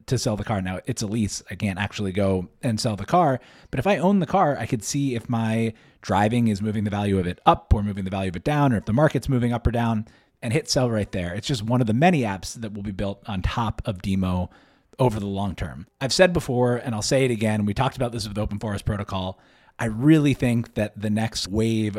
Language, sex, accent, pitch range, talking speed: English, male, American, 100-130 Hz, 265 wpm